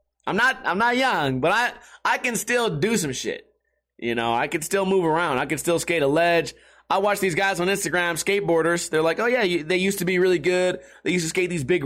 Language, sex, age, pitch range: English, male, 30-49, 155-205 Hz